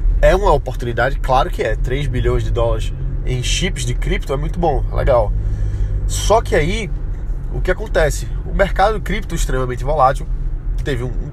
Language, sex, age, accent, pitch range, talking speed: Portuguese, male, 20-39, Brazilian, 95-135 Hz, 175 wpm